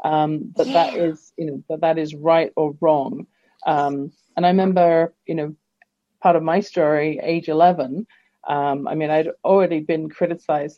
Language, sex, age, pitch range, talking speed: English, female, 40-59, 150-175 Hz, 180 wpm